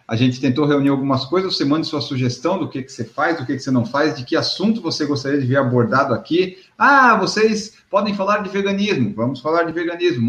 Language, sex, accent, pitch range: Portuguese, male, Brazilian, 145-195 Hz